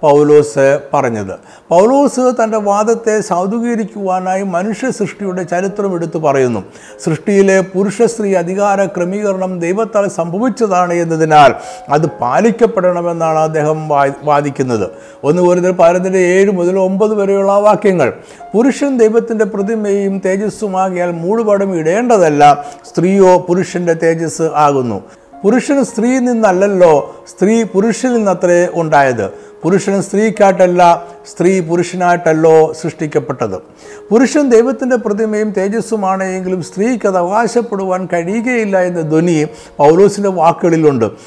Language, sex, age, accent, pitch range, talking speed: Malayalam, male, 50-69, native, 165-215 Hz, 95 wpm